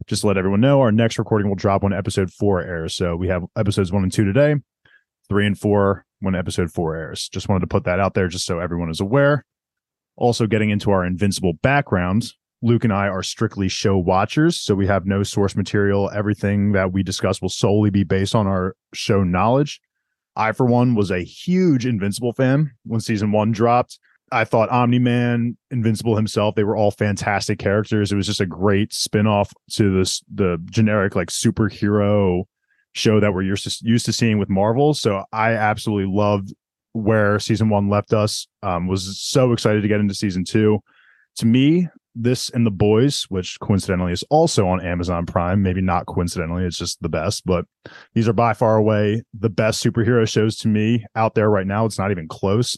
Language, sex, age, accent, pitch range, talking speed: English, male, 20-39, American, 95-115 Hz, 200 wpm